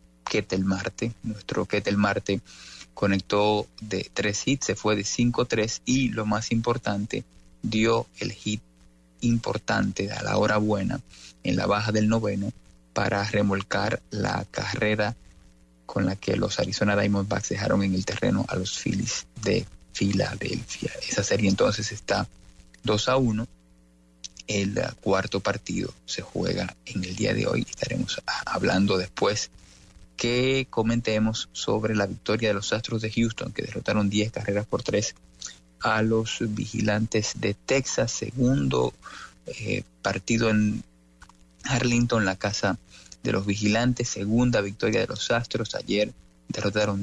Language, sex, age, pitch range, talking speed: English, male, 30-49, 95-110 Hz, 140 wpm